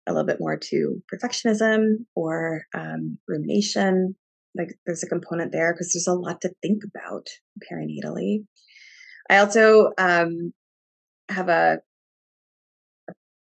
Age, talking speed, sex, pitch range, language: 20-39, 125 wpm, female, 165-195 Hz, English